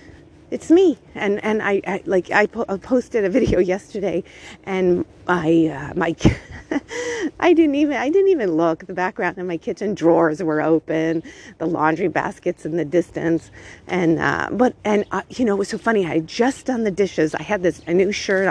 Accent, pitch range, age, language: American, 170-220 Hz, 40-59, English